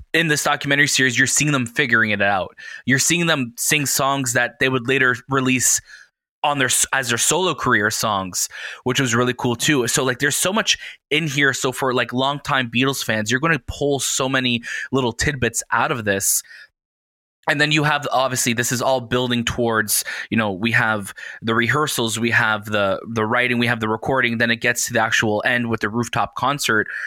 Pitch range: 115-145 Hz